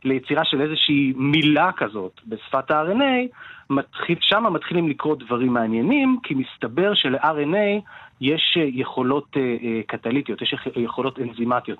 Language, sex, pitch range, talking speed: Hebrew, male, 120-160 Hz, 105 wpm